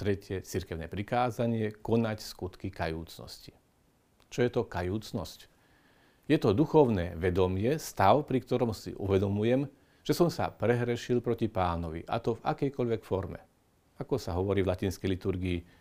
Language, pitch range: Slovak, 95-125 Hz